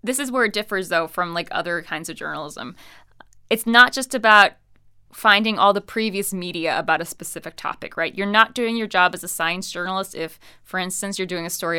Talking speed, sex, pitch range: 215 wpm, female, 180-230 Hz